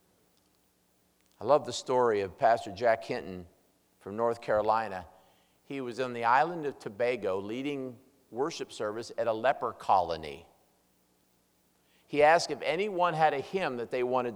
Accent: American